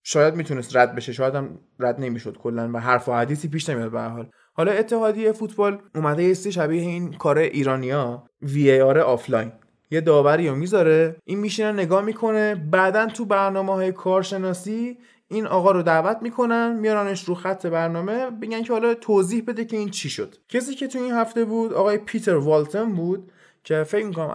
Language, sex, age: Persian, male, 20-39